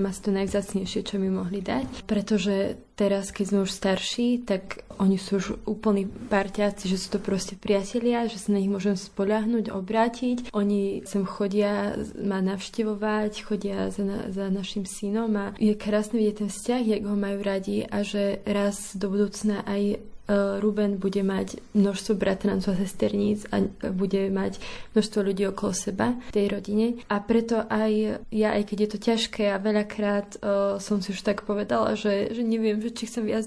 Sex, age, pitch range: female, 20-39, 200-215 Hz